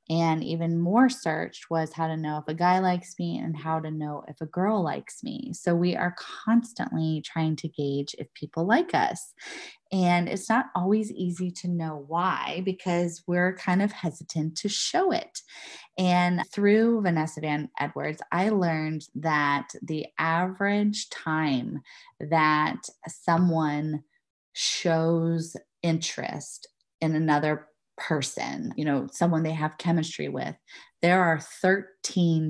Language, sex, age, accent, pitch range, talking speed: English, female, 20-39, American, 155-185 Hz, 145 wpm